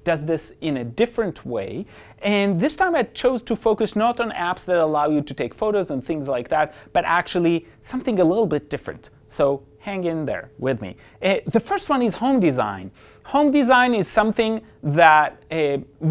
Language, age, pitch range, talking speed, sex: English, 30-49, 145-225 Hz, 195 wpm, male